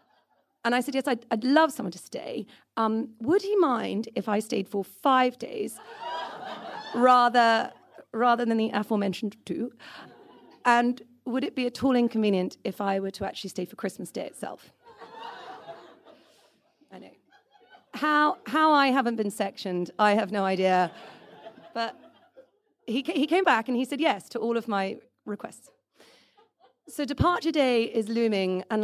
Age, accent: 30-49, British